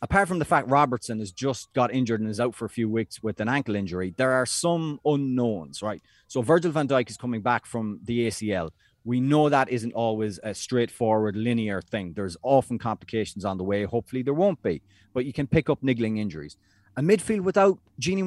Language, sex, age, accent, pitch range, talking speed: English, male, 30-49, Irish, 110-155 Hz, 215 wpm